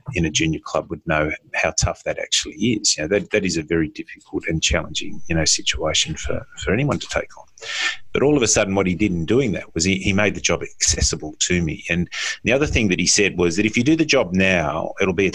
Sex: male